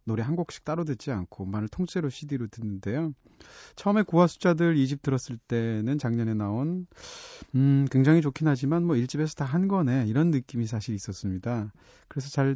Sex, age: male, 30-49